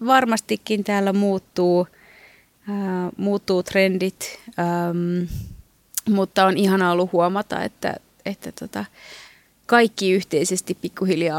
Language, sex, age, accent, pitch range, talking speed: Finnish, female, 30-49, native, 175-205 Hz, 95 wpm